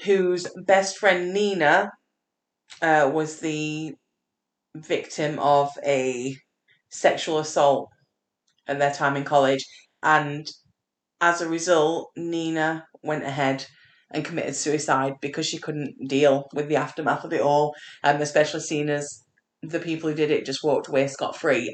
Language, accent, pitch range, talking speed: English, British, 145-180 Hz, 140 wpm